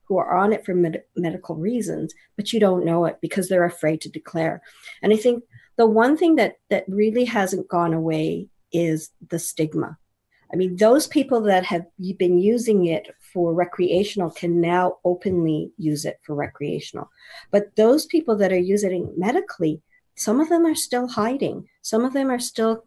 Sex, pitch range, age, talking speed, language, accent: female, 175-225 Hz, 50-69, 180 wpm, English, American